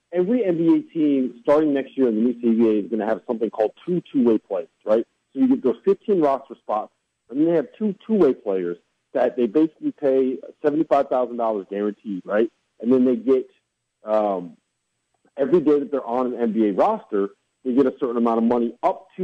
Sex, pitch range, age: male, 110-140 Hz, 40-59